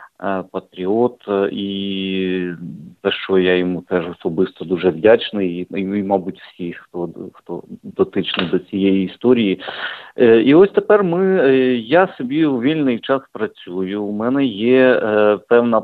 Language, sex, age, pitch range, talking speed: English, male, 50-69, 95-125 Hz, 130 wpm